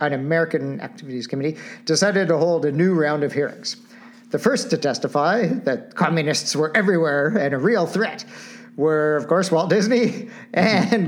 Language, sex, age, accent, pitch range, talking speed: English, male, 50-69, American, 140-215 Hz, 160 wpm